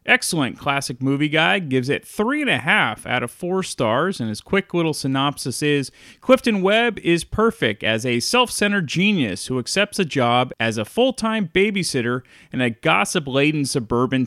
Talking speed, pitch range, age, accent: 155 wpm, 125-185 Hz, 30-49, American